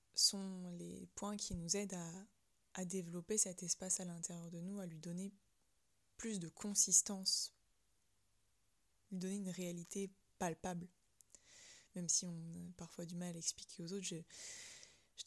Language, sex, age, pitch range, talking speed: French, female, 20-39, 175-200 Hz, 155 wpm